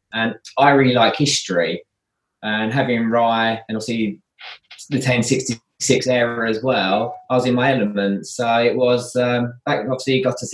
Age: 20-39